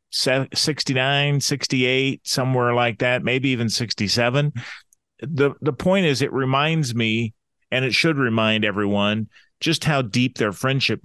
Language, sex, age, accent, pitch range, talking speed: English, male, 40-59, American, 105-135 Hz, 135 wpm